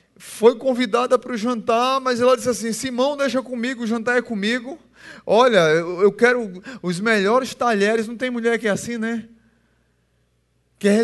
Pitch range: 210-250 Hz